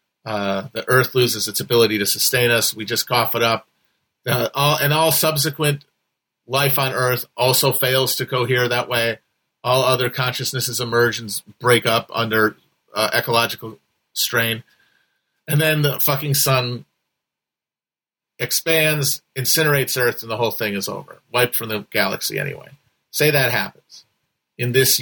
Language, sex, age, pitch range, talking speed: English, male, 40-59, 120-145 Hz, 150 wpm